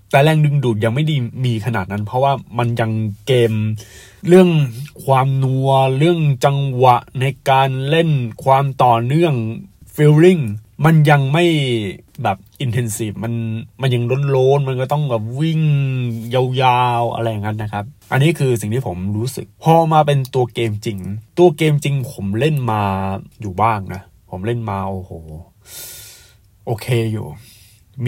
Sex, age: male, 20-39